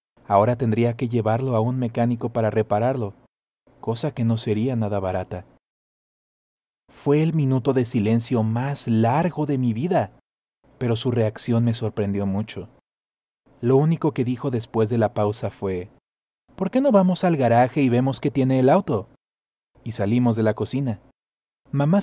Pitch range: 115-140 Hz